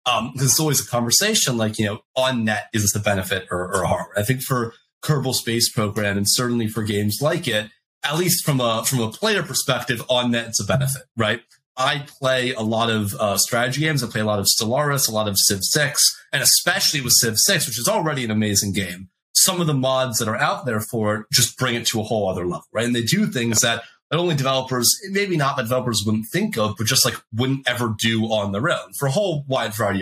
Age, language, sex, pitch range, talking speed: 30-49, English, male, 105-135 Hz, 240 wpm